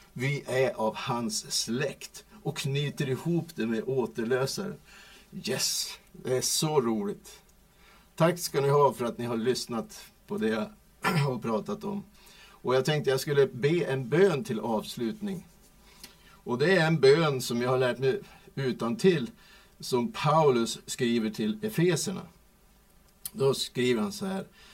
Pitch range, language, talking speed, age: 140-195 Hz, Swedish, 155 wpm, 60-79